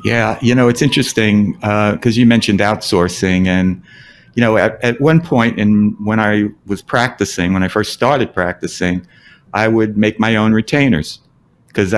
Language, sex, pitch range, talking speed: English, male, 100-125 Hz, 170 wpm